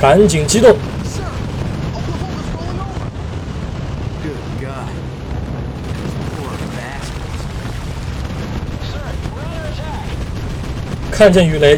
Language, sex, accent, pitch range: Chinese, male, native, 130-175 Hz